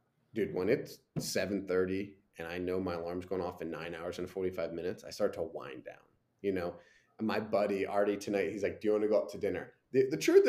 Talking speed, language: 245 wpm, English